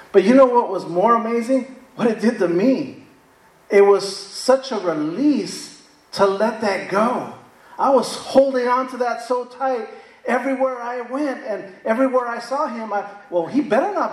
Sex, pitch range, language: male, 175-250 Hz, English